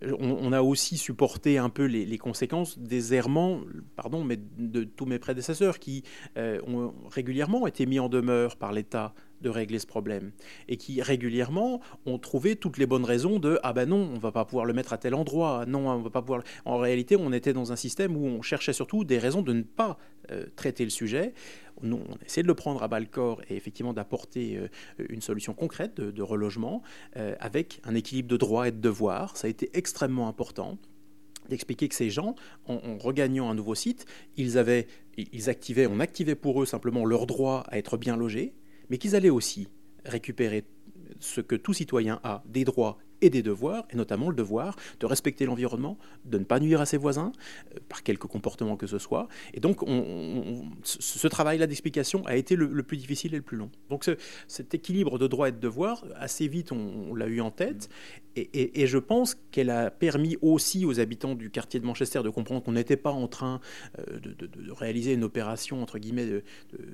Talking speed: 210 wpm